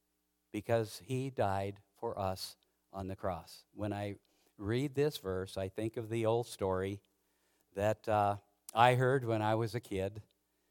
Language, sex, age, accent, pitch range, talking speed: English, male, 60-79, American, 105-135 Hz, 155 wpm